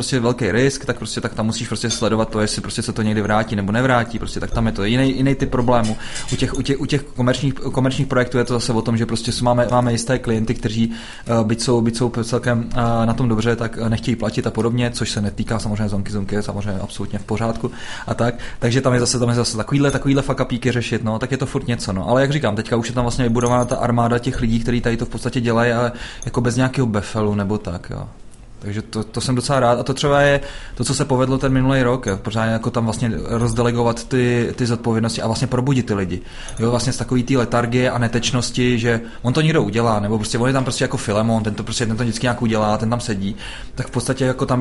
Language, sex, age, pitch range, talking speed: Czech, male, 20-39, 115-130 Hz, 245 wpm